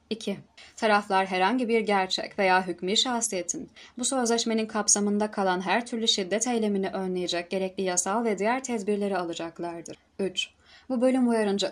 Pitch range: 185-220 Hz